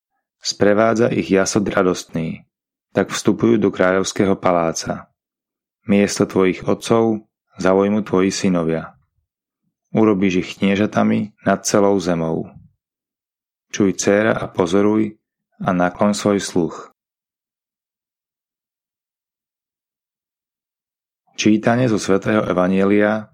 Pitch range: 95-110 Hz